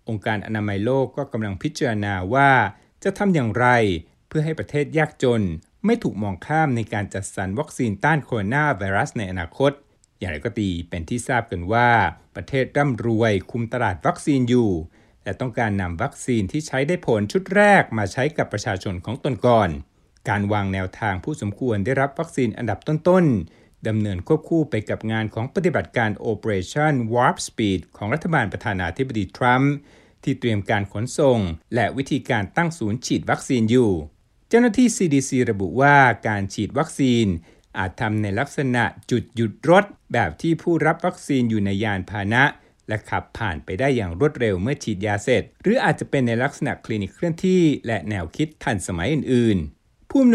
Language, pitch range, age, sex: Thai, 100-140 Hz, 60-79, male